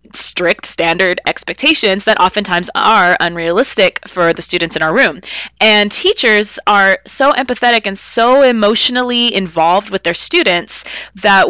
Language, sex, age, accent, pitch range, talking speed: English, female, 20-39, American, 180-230 Hz, 135 wpm